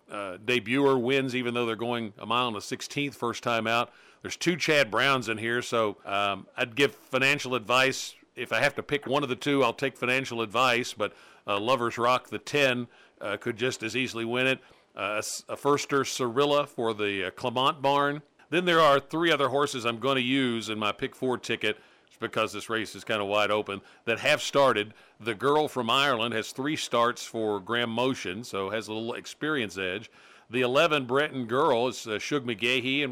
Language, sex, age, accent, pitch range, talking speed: English, male, 50-69, American, 115-135 Hz, 210 wpm